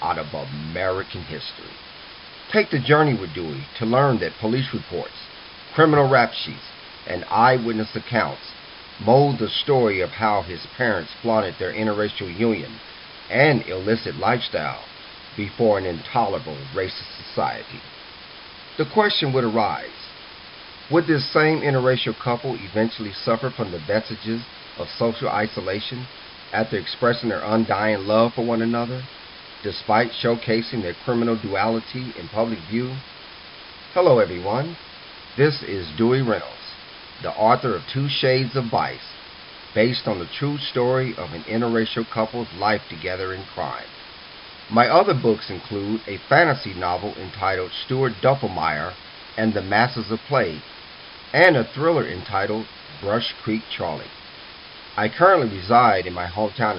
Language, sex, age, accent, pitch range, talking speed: English, male, 40-59, American, 105-130 Hz, 135 wpm